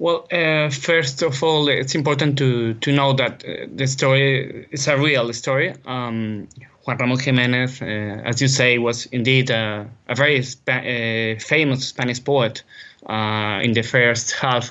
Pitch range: 125-155 Hz